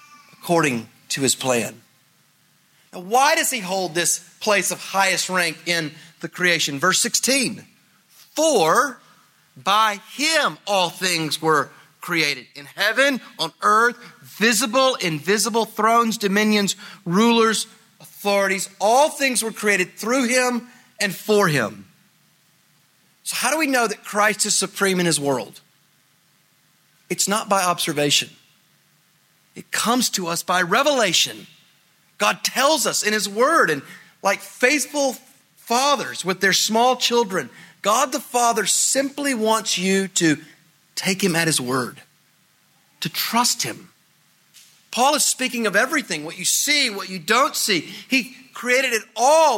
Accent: American